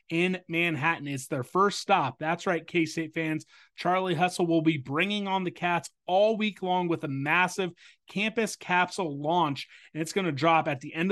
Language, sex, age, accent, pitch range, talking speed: English, male, 30-49, American, 160-185 Hz, 190 wpm